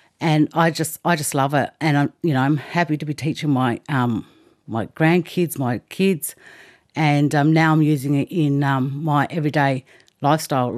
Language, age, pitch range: English, 50-69, 145-170 Hz